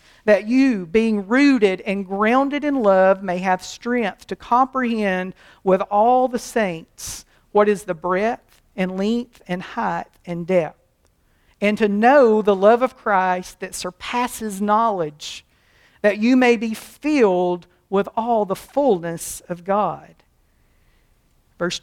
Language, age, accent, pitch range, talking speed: English, 50-69, American, 185-245 Hz, 135 wpm